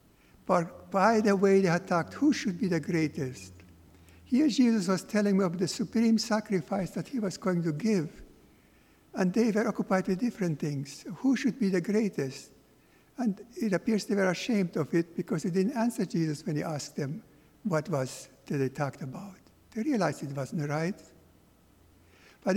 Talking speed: 180 wpm